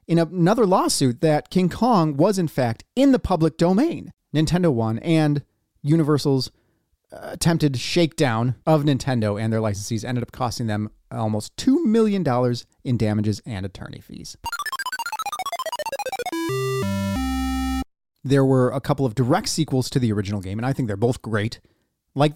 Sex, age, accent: male, 30-49, American